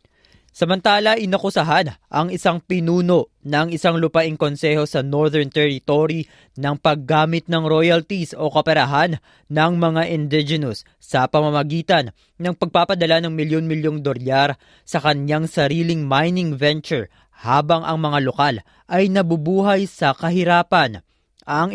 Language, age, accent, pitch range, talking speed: Filipino, 20-39, native, 145-170 Hz, 115 wpm